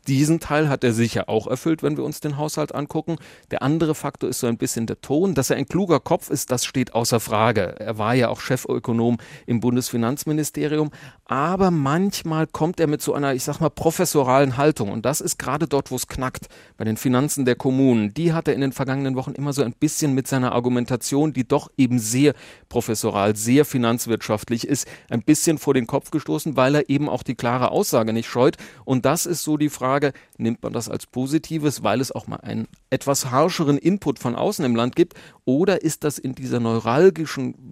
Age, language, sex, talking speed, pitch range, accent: 40-59, German, male, 210 wpm, 120-150 Hz, German